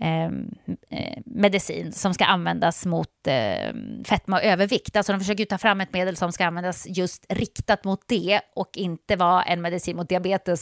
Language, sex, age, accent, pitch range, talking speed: Swedish, female, 30-49, native, 180-230 Hz, 180 wpm